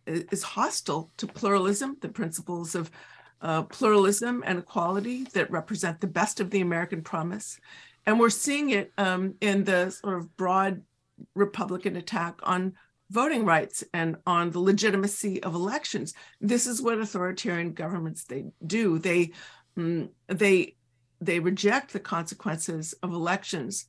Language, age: English, 50-69